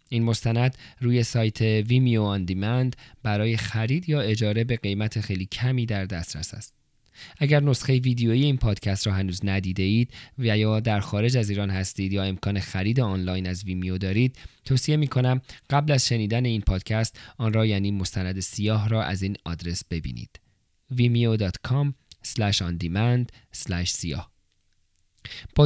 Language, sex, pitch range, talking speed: Persian, male, 100-125 Hz, 135 wpm